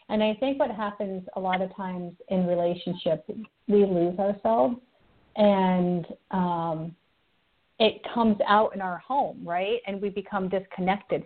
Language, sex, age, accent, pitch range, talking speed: English, female, 40-59, American, 185-240 Hz, 145 wpm